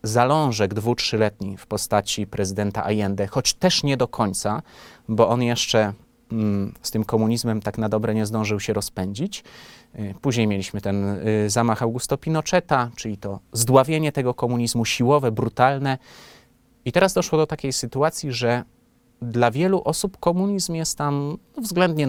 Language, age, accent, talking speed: Polish, 30-49, native, 140 wpm